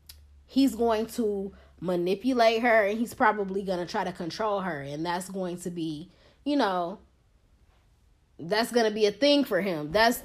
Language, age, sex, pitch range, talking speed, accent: English, 20-39, female, 195-265 Hz, 175 wpm, American